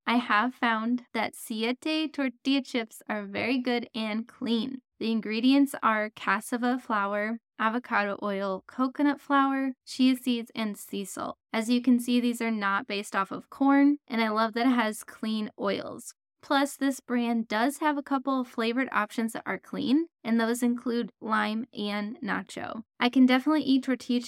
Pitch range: 220-260 Hz